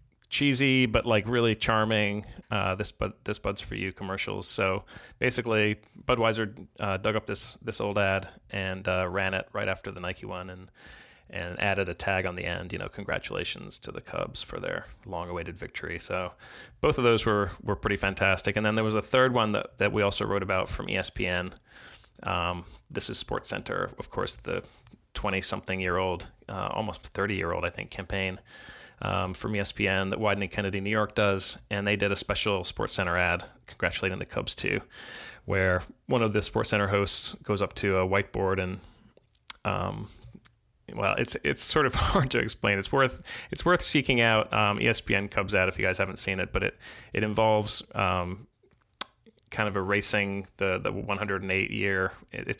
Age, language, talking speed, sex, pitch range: 30-49, English, 190 wpm, male, 95-105 Hz